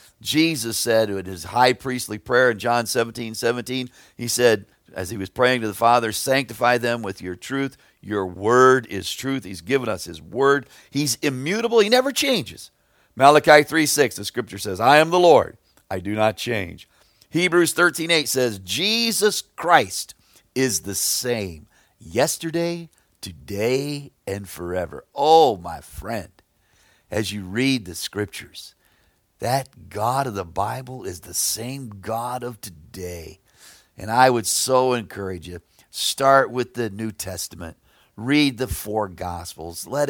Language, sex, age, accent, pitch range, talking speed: English, male, 50-69, American, 100-135 Hz, 150 wpm